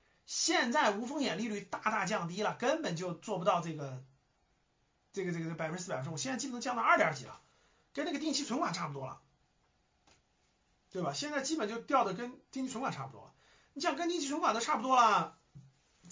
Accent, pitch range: native, 180-280 Hz